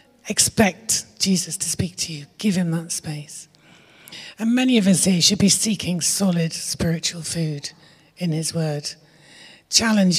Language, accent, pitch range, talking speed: English, British, 160-200 Hz, 145 wpm